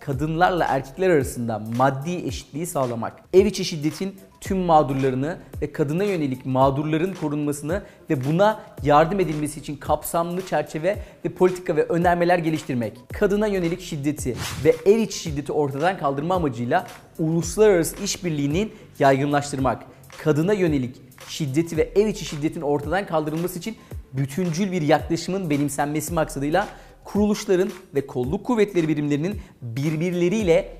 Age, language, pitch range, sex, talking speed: 40-59, Turkish, 145-195 Hz, male, 120 wpm